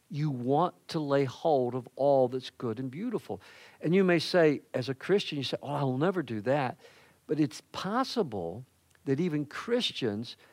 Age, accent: 50-69, American